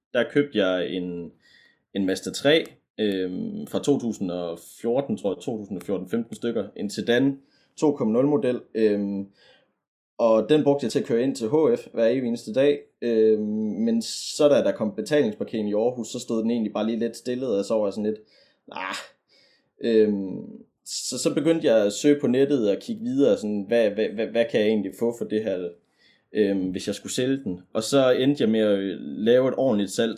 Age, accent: 20-39, native